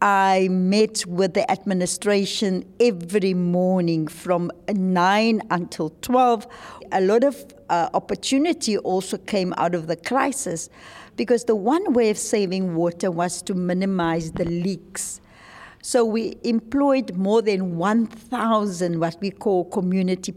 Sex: female